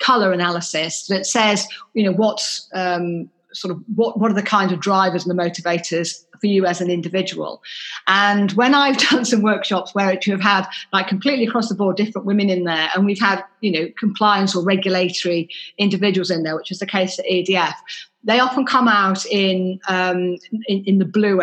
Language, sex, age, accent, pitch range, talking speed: English, female, 40-59, British, 175-205 Hz, 200 wpm